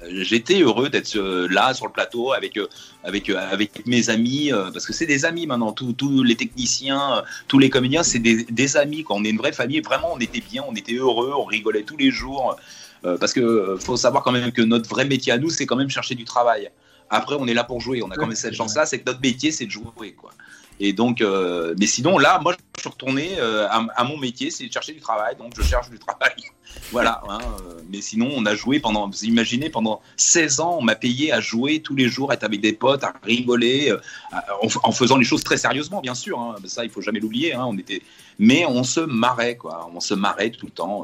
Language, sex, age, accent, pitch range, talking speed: French, male, 30-49, French, 105-135 Hz, 250 wpm